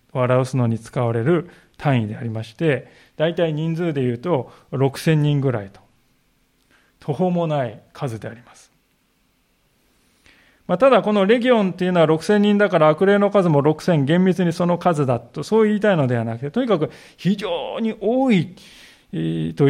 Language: Japanese